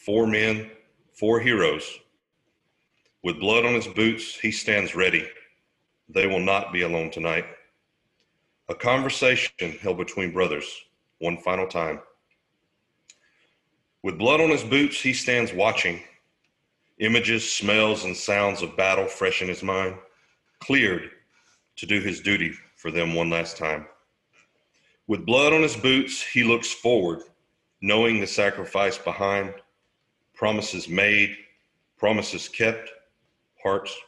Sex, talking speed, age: male, 125 wpm, 40-59